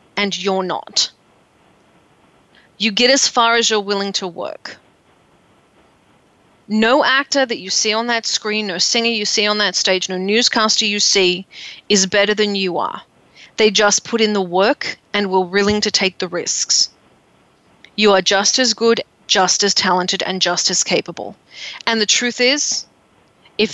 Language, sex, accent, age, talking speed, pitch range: English, female, Australian, 30-49, 165 wpm, 200-235 Hz